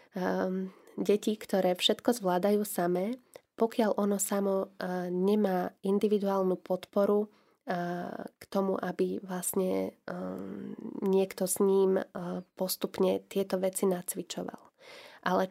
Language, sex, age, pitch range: Slovak, female, 20-39, 185-215 Hz